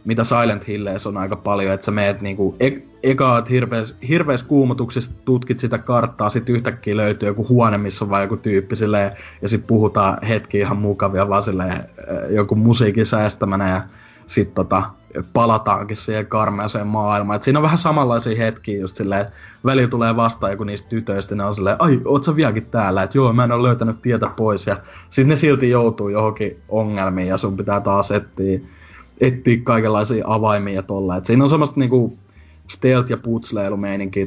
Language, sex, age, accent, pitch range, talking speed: Finnish, male, 20-39, native, 100-120 Hz, 170 wpm